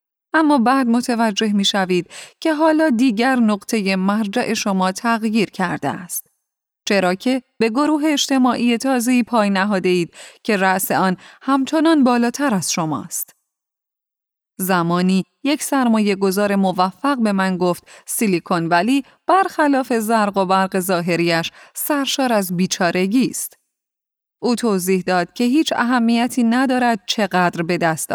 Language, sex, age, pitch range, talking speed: Persian, female, 30-49, 185-255 Hz, 125 wpm